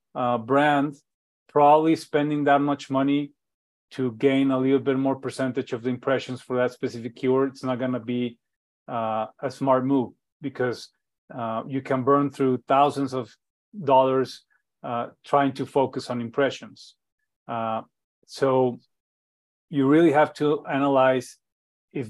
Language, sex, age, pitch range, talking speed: English, male, 30-49, 125-145 Hz, 140 wpm